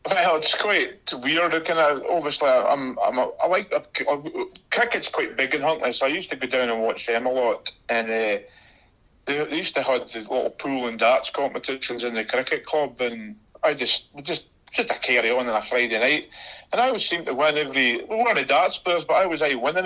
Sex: male